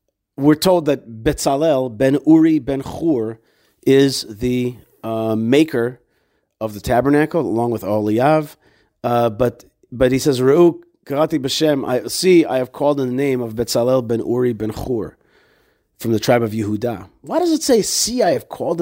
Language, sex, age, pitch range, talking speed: English, male, 40-59, 115-150 Hz, 170 wpm